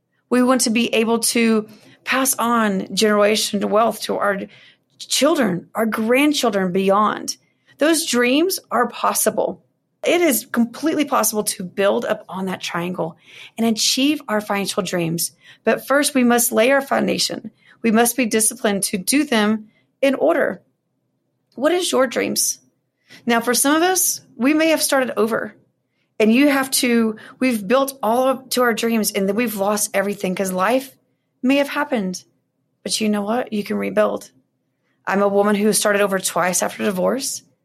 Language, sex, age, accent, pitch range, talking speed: English, female, 30-49, American, 205-260 Hz, 160 wpm